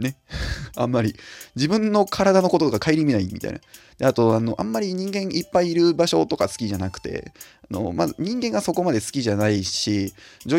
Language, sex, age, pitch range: Japanese, male, 20-39, 105-165 Hz